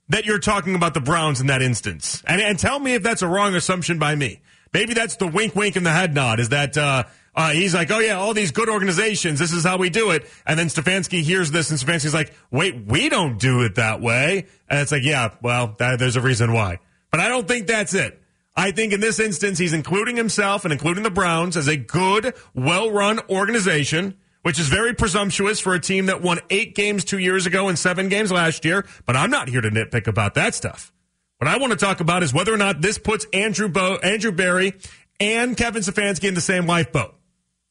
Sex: male